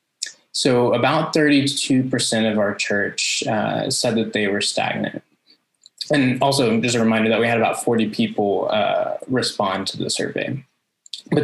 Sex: male